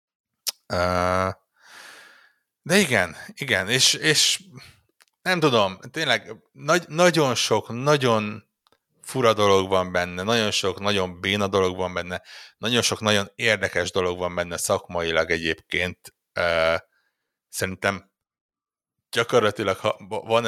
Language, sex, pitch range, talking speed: Hungarian, male, 90-110 Hz, 110 wpm